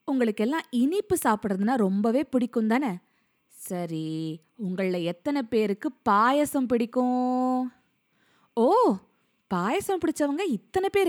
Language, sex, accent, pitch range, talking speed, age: Tamil, female, native, 200-280 Hz, 90 wpm, 20-39